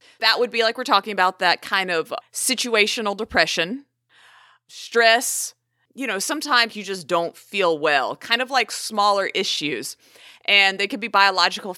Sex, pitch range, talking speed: female, 180-240 Hz, 160 wpm